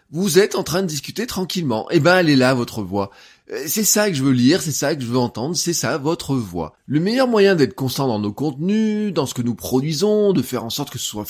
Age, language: 20-39, French